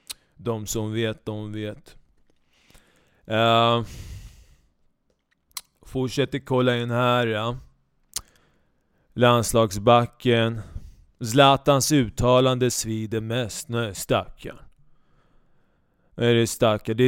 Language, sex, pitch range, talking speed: Swedish, male, 110-130 Hz, 75 wpm